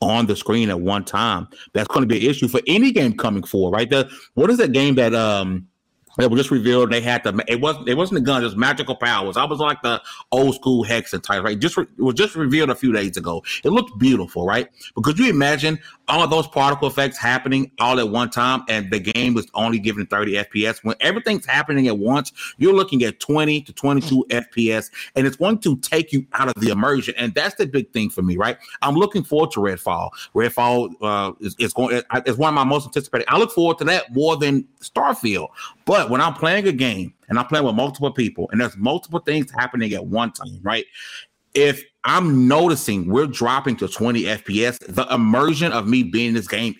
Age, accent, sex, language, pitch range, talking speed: 30-49, American, male, English, 110-145 Hz, 230 wpm